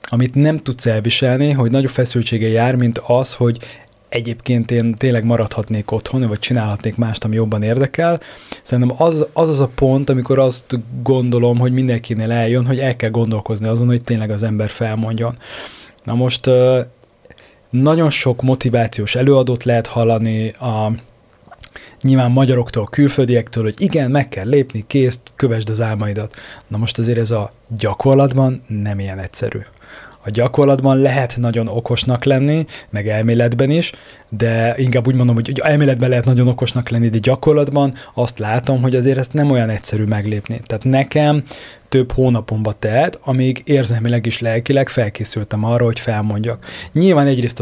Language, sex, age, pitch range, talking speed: Hungarian, male, 20-39, 115-135 Hz, 150 wpm